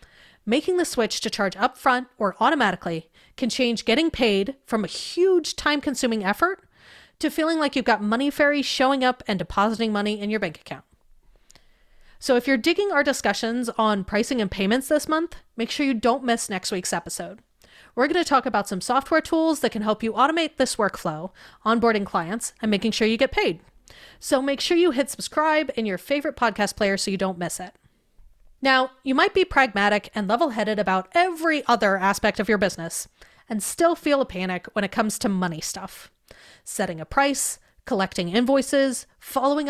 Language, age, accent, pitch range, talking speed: English, 30-49, American, 205-280 Hz, 185 wpm